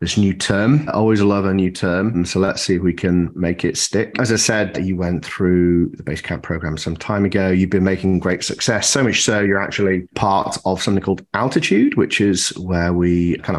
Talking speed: 230 wpm